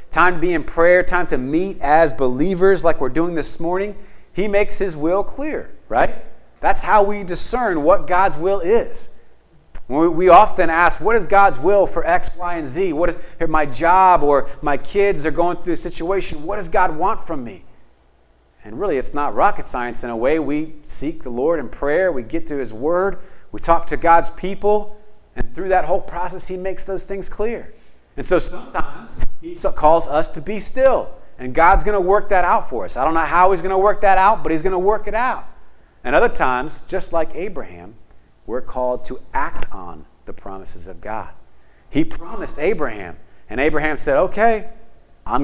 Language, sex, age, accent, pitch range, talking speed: English, male, 40-59, American, 130-190 Hz, 200 wpm